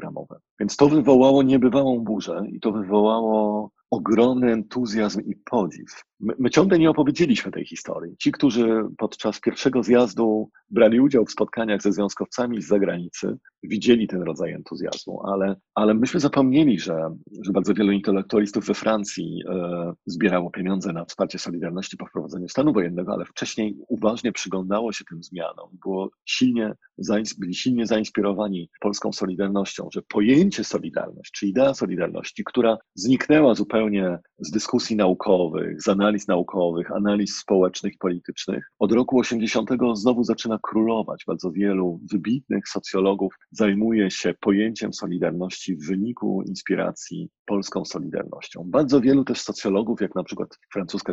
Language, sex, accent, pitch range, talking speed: Polish, male, native, 90-115 Hz, 140 wpm